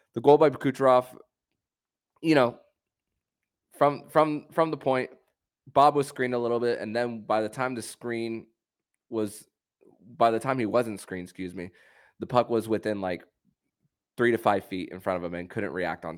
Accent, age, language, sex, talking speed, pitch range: American, 20-39, English, male, 185 wpm, 95-120 Hz